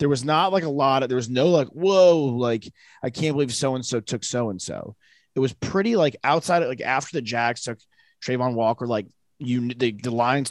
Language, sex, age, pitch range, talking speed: English, male, 20-39, 105-130 Hz, 210 wpm